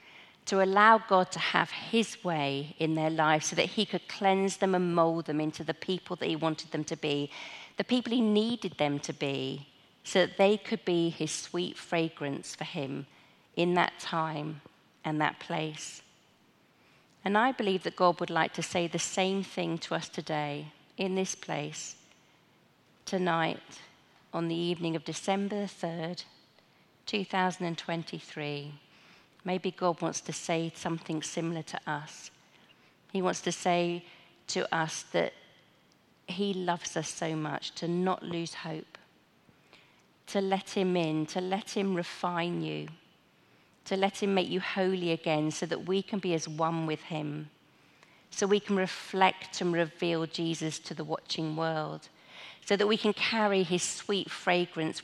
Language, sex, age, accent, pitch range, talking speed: English, female, 40-59, British, 160-190 Hz, 160 wpm